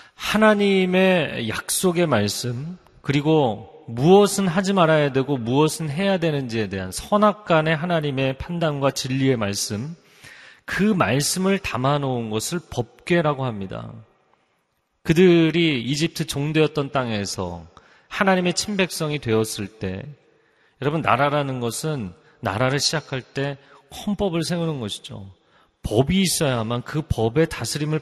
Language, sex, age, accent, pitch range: Korean, male, 40-59, native, 120-175 Hz